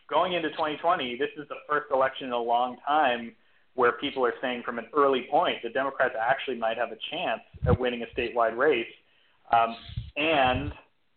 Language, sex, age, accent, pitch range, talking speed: English, male, 30-49, American, 120-150 Hz, 185 wpm